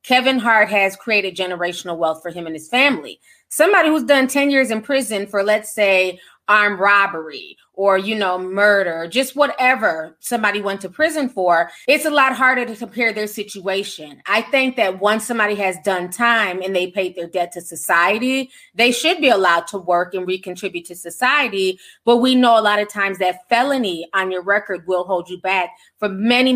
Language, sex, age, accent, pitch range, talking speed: English, female, 20-39, American, 185-240 Hz, 190 wpm